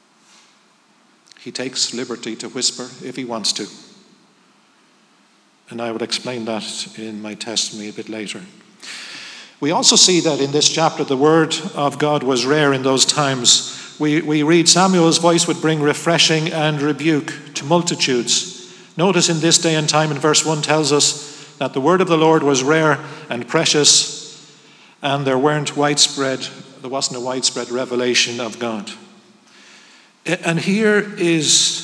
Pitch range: 130-165 Hz